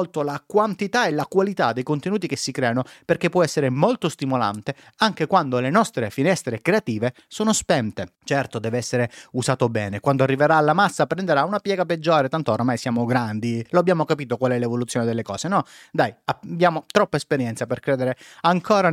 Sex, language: male, Italian